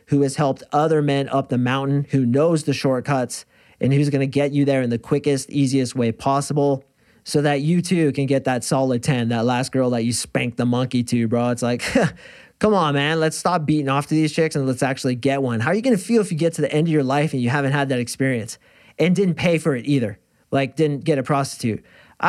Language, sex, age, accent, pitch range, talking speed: English, male, 30-49, American, 135-175 Hz, 250 wpm